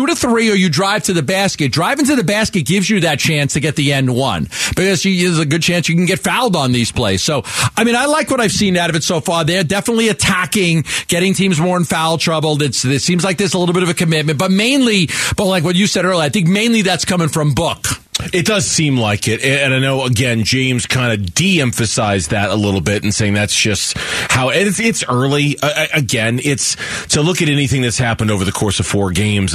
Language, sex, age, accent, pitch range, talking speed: English, male, 40-59, American, 110-165 Hz, 245 wpm